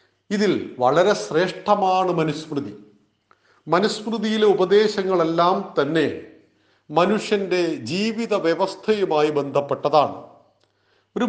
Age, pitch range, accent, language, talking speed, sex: 40-59, 165-210 Hz, native, Malayalam, 65 wpm, male